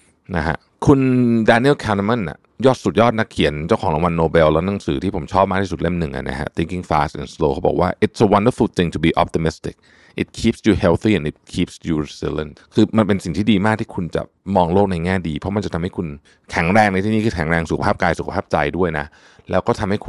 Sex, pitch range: male, 85-110 Hz